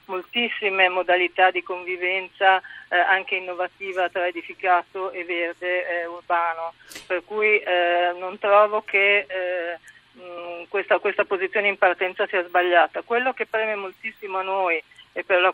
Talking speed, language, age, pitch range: 145 wpm, Italian, 40-59, 175-195 Hz